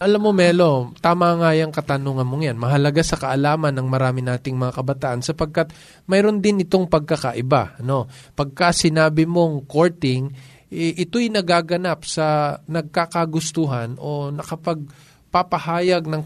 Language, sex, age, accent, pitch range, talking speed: Filipino, male, 20-39, native, 135-175 Hz, 130 wpm